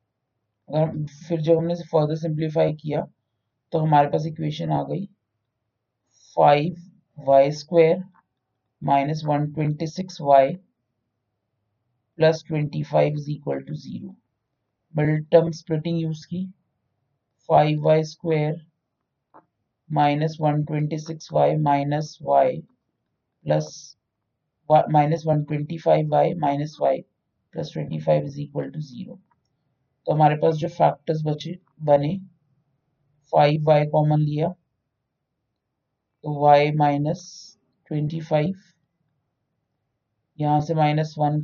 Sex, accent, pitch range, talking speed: male, native, 125-160 Hz, 95 wpm